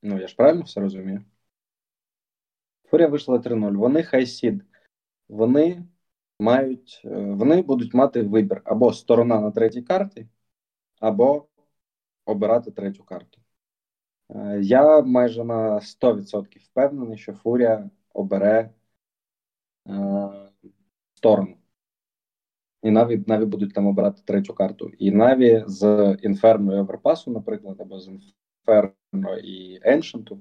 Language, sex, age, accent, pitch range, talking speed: Ukrainian, male, 20-39, native, 105-130 Hz, 110 wpm